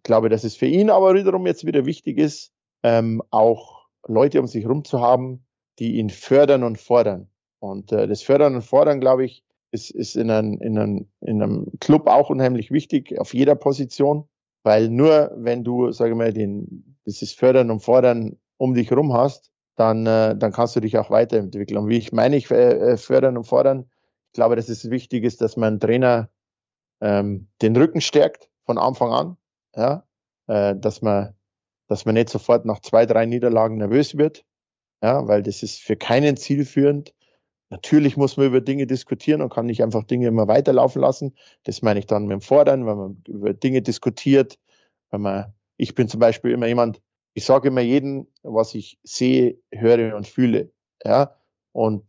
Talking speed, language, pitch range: 185 wpm, German, 110-135 Hz